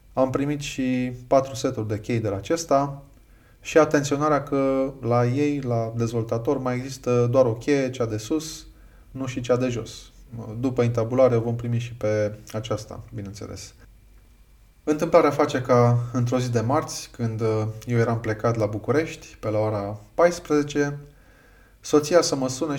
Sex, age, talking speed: male, 20-39, 155 wpm